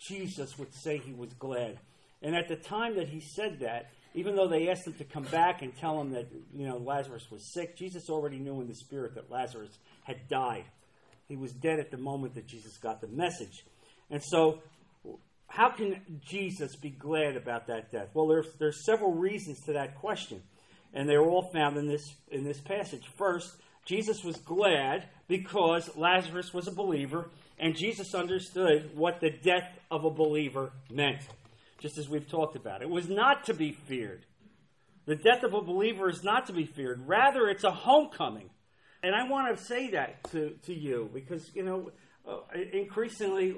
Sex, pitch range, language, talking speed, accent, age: male, 140-185 Hz, English, 190 wpm, American, 40-59